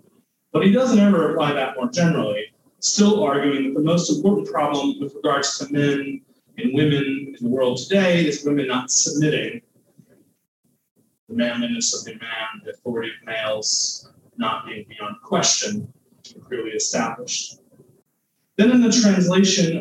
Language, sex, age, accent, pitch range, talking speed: English, male, 30-49, American, 130-195 Hz, 145 wpm